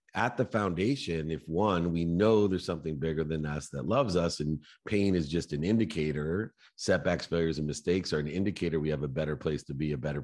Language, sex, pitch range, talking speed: English, male, 80-95 Hz, 215 wpm